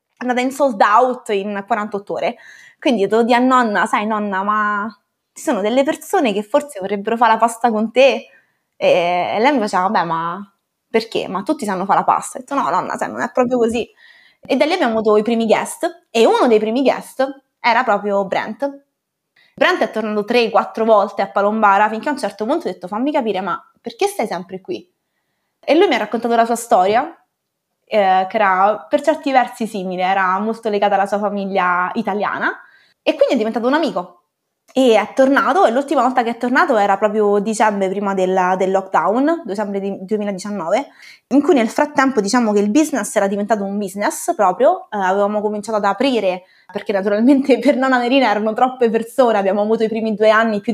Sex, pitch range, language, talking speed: female, 200-255 Hz, Italian, 195 wpm